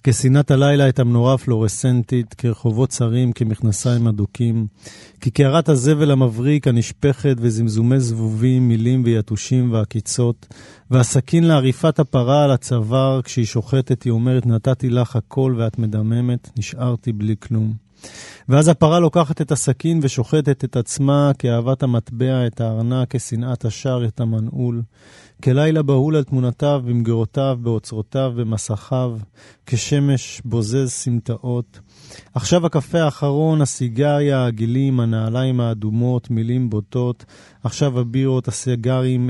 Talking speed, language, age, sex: 110 wpm, Hebrew, 40-59, male